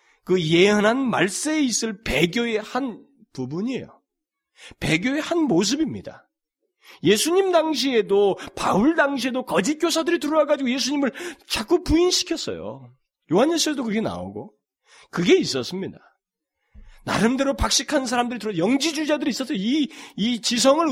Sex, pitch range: male, 200-290 Hz